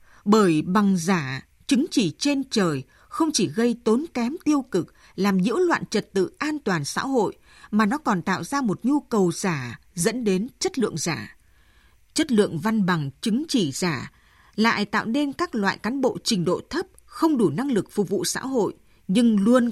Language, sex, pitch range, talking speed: Vietnamese, female, 185-250 Hz, 195 wpm